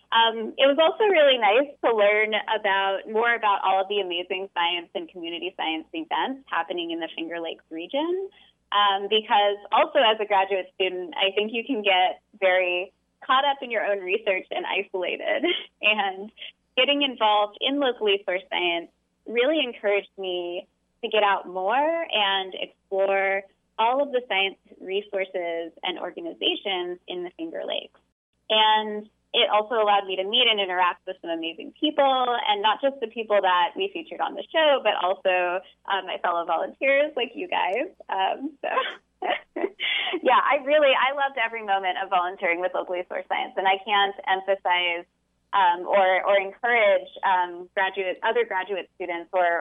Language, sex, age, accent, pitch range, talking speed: English, female, 20-39, American, 185-275 Hz, 165 wpm